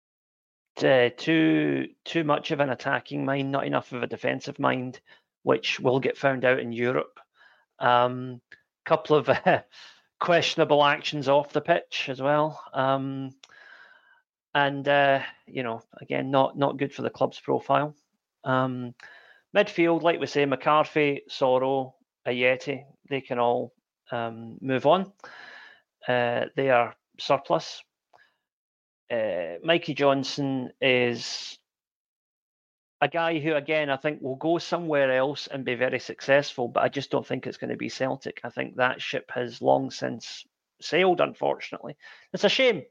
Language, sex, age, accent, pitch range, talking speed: English, male, 40-59, British, 130-155 Hz, 145 wpm